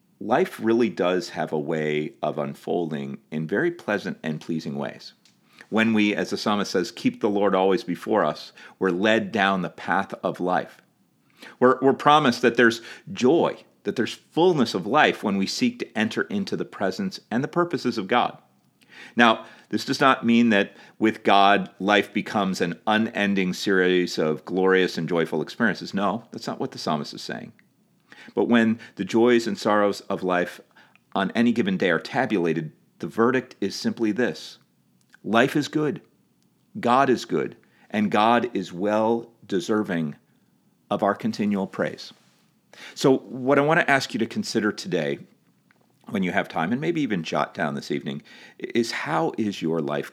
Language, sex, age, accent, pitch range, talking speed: English, male, 40-59, American, 85-120 Hz, 170 wpm